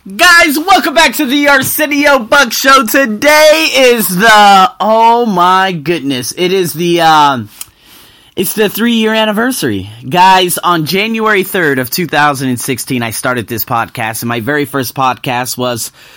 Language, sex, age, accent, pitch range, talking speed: English, male, 30-49, American, 130-205 Hz, 145 wpm